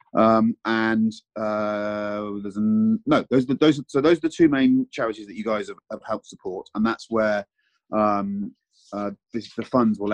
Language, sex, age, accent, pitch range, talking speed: English, male, 30-49, British, 105-145 Hz, 200 wpm